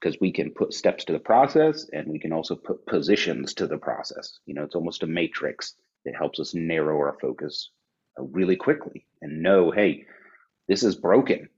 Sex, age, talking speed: male, 30-49, 190 wpm